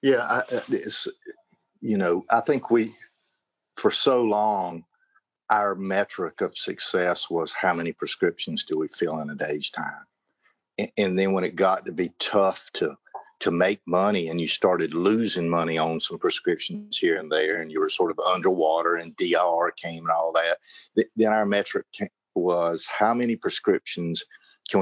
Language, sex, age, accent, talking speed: English, male, 50-69, American, 160 wpm